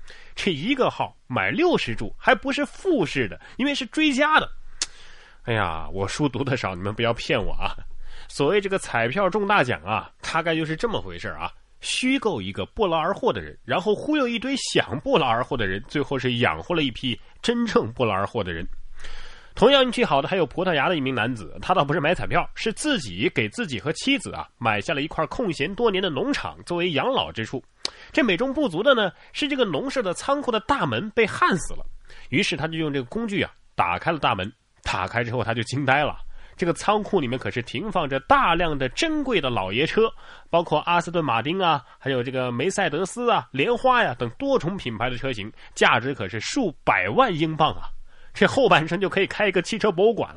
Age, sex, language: 30-49, male, Chinese